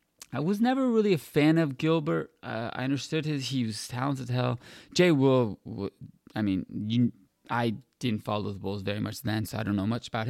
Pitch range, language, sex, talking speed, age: 110-140 Hz, English, male, 205 wpm, 20-39